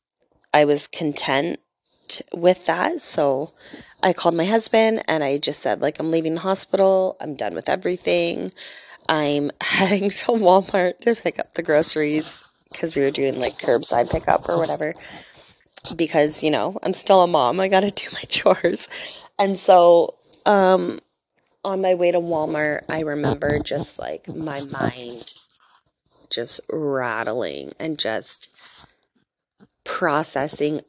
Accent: American